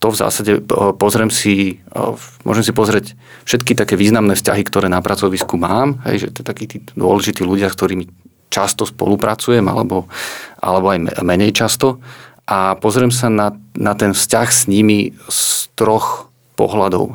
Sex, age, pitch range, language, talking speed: male, 40-59, 100-115 Hz, Slovak, 145 wpm